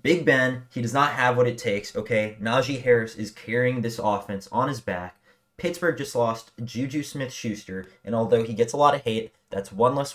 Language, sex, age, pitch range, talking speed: English, male, 20-39, 105-130 Hz, 205 wpm